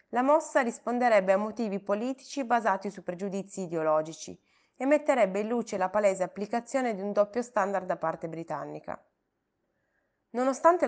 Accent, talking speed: native, 140 wpm